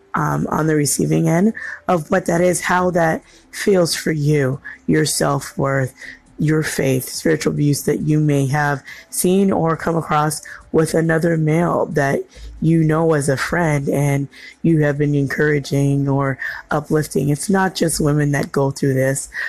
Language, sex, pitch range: English, female, 140-165 Hz